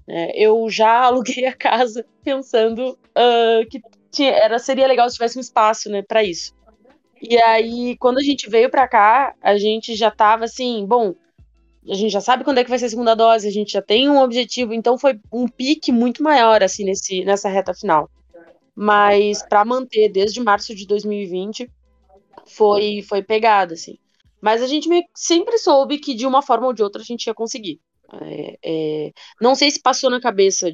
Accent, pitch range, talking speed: Brazilian, 195-240 Hz, 175 wpm